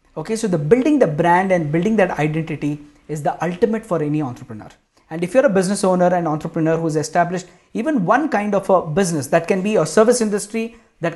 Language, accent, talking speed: English, Indian, 210 wpm